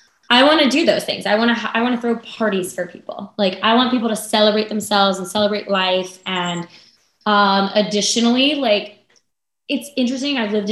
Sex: female